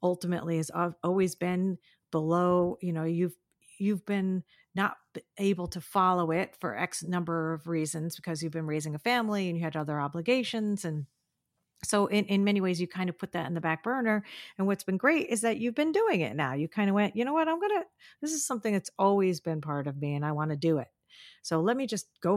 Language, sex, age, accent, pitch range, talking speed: English, female, 40-59, American, 160-205 Hz, 235 wpm